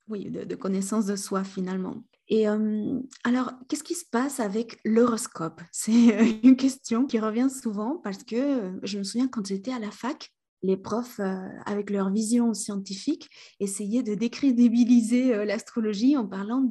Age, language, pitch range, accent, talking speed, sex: 20-39, French, 210-265 Hz, French, 165 wpm, female